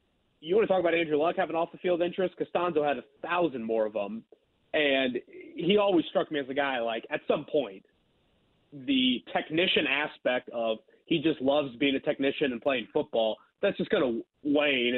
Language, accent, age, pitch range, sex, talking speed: English, American, 30-49, 135-175 Hz, male, 190 wpm